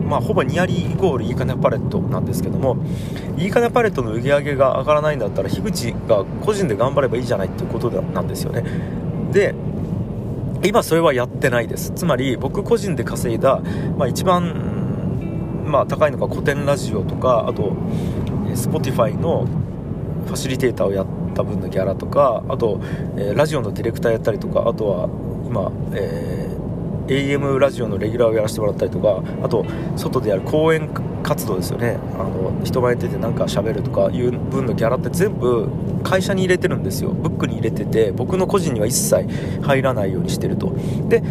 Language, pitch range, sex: Japanese, 135-180 Hz, male